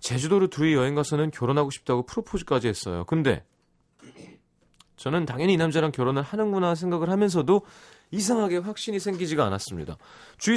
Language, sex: Korean, male